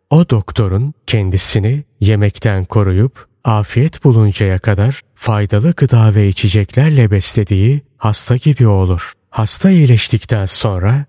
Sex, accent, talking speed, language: male, native, 105 wpm, Turkish